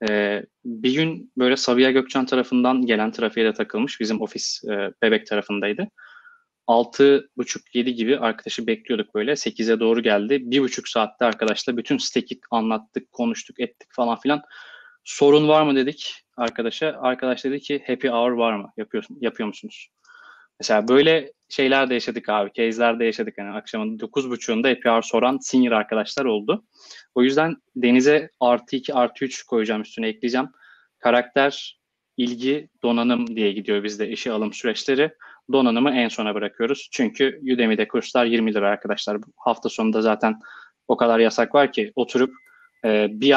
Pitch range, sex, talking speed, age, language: 115-140 Hz, male, 150 wpm, 20-39, Turkish